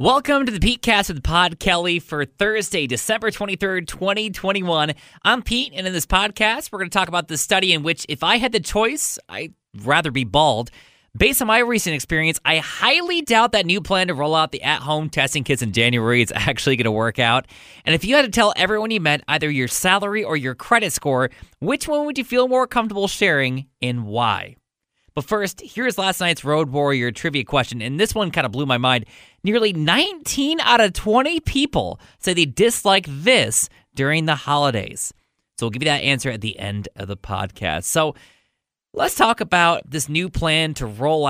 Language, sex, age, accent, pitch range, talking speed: English, male, 20-39, American, 135-200 Hz, 205 wpm